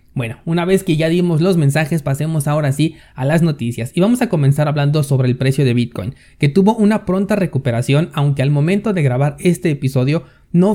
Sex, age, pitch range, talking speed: male, 30-49, 130-170 Hz, 205 wpm